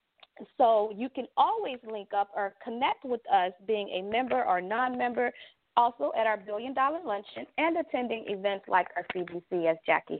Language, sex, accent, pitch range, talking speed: English, female, American, 220-315 Hz, 170 wpm